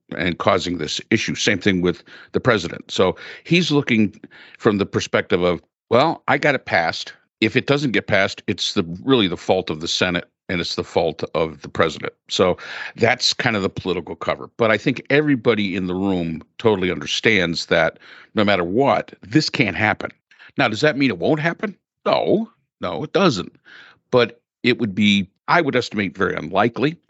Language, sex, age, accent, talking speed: English, male, 50-69, American, 185 wpm